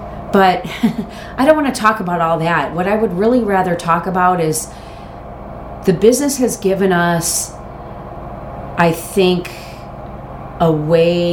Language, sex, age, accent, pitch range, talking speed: English, female, 40-59, American, 170-215 Hz, 130 wpm